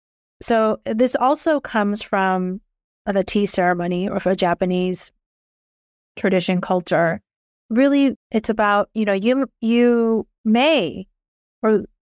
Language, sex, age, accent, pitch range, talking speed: English, female, 30-49, American, 180-220 Hz, 115 wpm